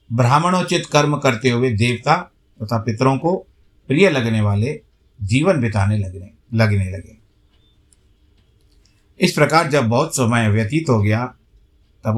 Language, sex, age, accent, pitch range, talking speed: Hindi, male, 50-69, native, 105-140 Hz, 125 wpm